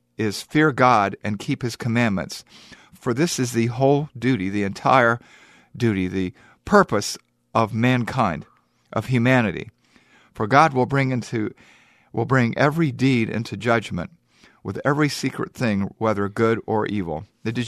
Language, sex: English, male